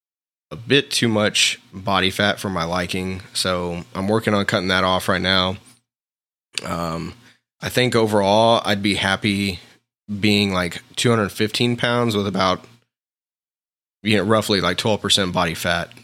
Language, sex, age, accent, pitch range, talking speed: English, male, 20-39, American, 95-110 Hz, 140 wpm